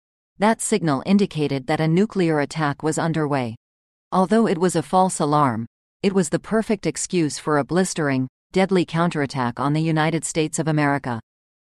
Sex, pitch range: female, 150-185 Hz